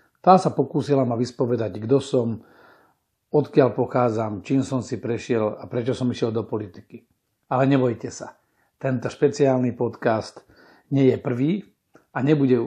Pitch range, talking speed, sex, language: 115-130 Hz, 140 wpm, male, Slovak